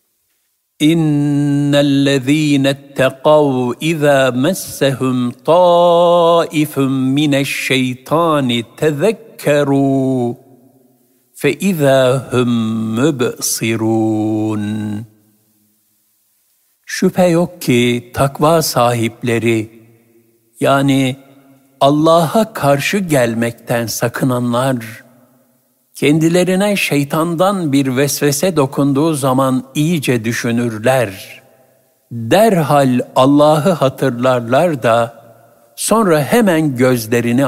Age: 60-79